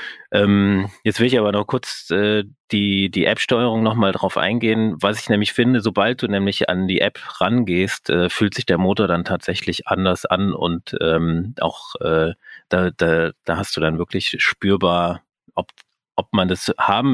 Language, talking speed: German, 180 wpm